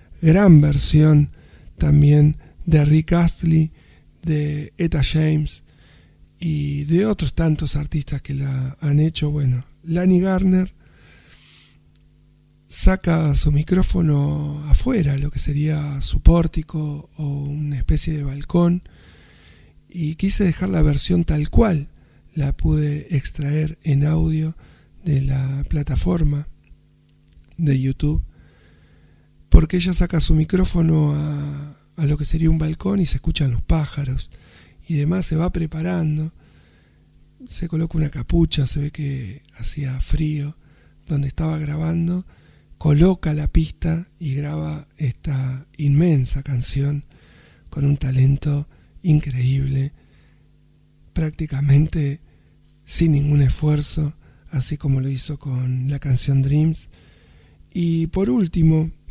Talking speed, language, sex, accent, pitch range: 115 wpm, Spanish, male, Argentinian, 140-160 Hz